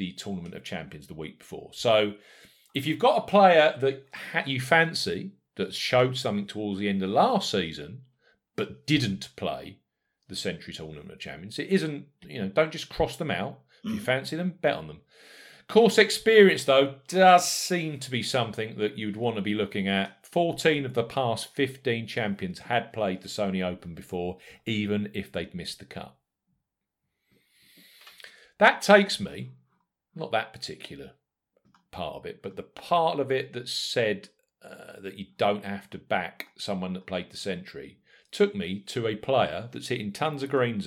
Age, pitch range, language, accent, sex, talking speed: 40-59, 100-165 Hz, English, British, male, 175 wpm